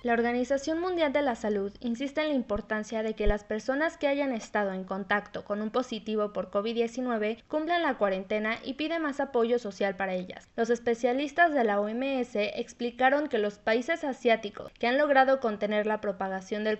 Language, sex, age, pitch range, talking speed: Spanish, female, 20-39, 210-265 Hz, 180 wpm